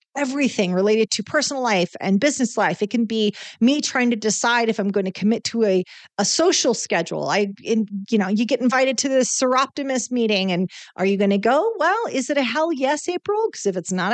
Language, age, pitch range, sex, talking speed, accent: English, 40-59, 190-255 Hz, female, 225 wpm, American